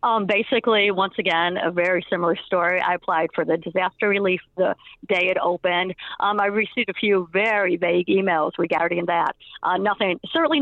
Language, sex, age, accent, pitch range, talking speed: English, female, 40-59, American, 170-205 Hz, 175 wpm